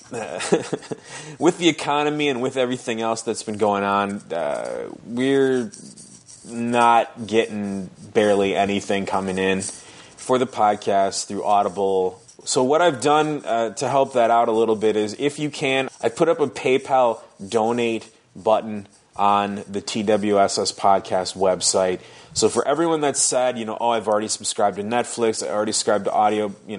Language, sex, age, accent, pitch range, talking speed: English, male, 20-39, American, 100-125 Hz, 160 wpm